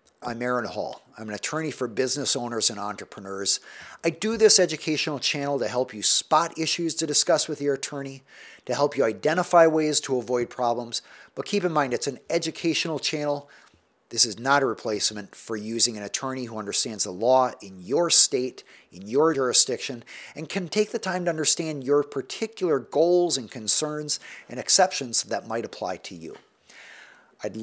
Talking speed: 175 wpm